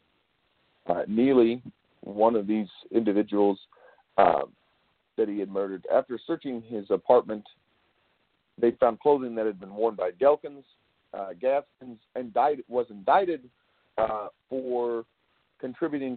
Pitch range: 105-135 Hz